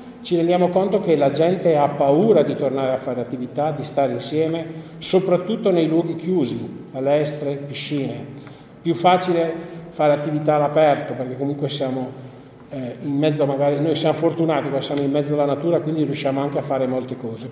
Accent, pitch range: native, 140-165 Hz